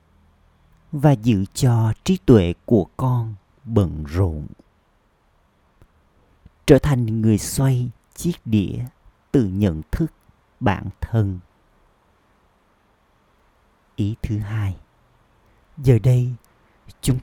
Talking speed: 90 wpm